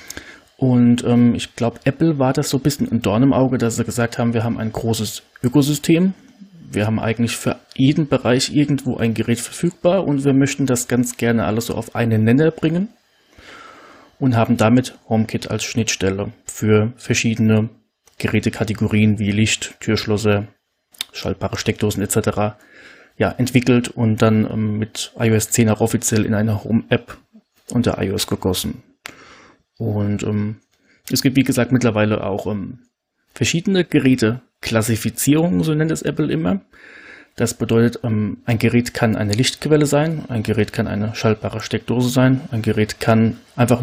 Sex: male